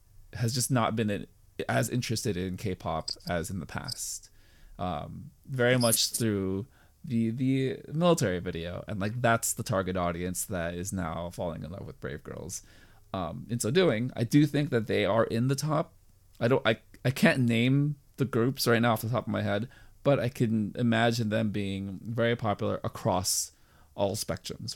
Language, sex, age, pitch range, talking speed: English, male, 20-39, 95-120 Hz, 185 wpm